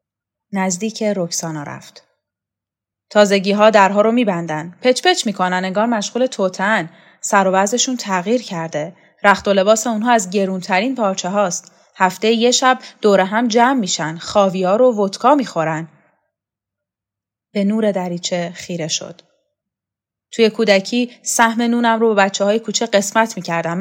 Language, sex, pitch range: Persian, female, 190-245 Hz